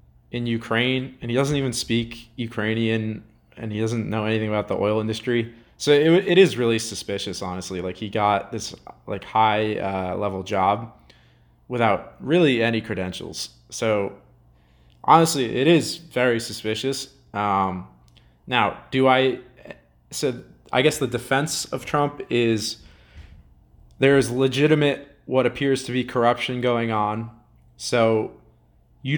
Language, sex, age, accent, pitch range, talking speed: English, male, 20-39, American, 105-135 Hz, 140 wpm